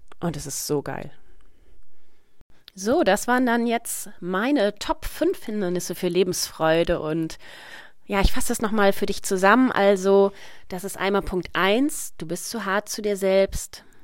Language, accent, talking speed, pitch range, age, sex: German, German, 160 wpm, 165-200 Hz, 30-49, female